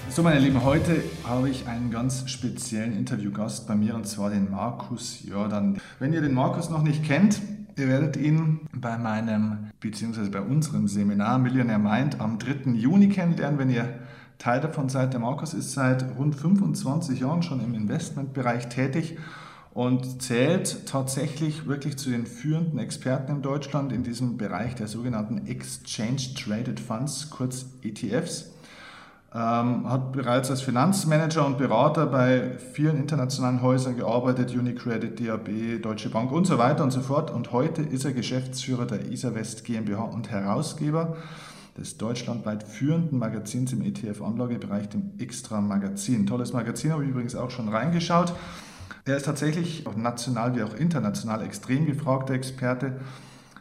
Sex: male